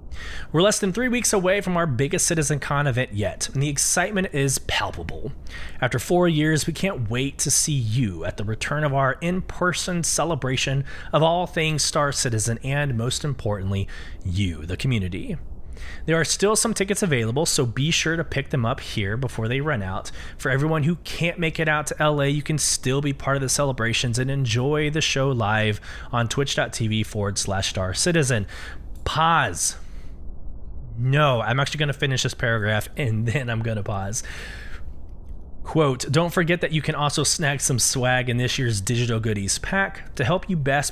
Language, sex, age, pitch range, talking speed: English, male, 20-39, 105-155 Hz, 185 wpm